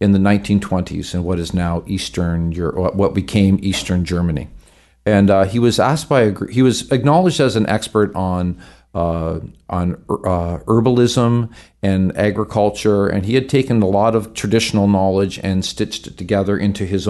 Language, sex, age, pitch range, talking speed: English, male, 50-69, 95-125 Hz, 170 wpm